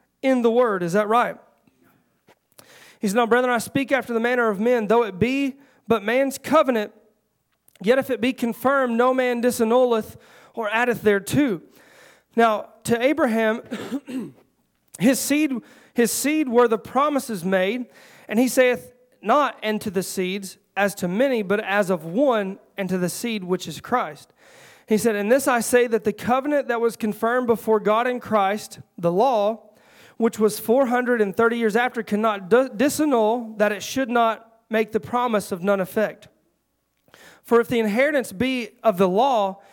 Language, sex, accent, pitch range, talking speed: English, male, American, 210-250 Hz, 165 wpm